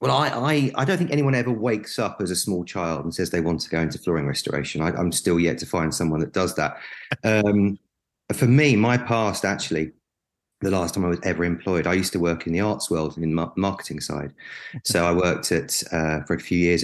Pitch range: 85-105 Hz